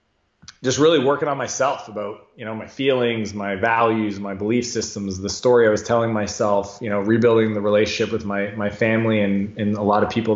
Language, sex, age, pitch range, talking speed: English, male, 20-39, 105-125 Hz, 210 wpm